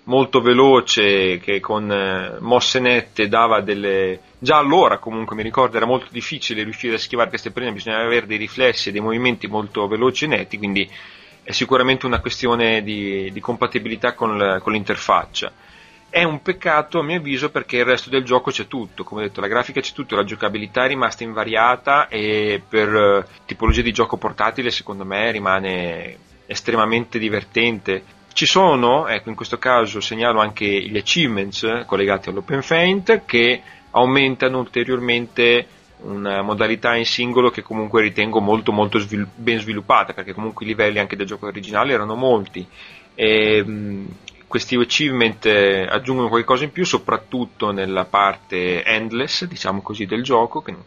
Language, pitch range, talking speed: Italian, 100-125 Hz, 165 wpm